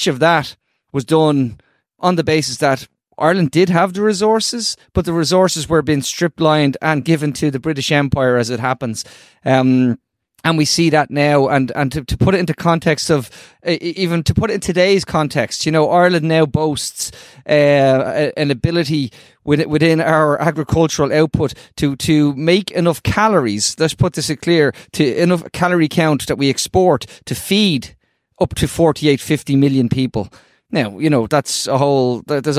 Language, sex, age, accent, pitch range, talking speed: English, male, 30-49, Irish, 140-165 Hz, 170 wpm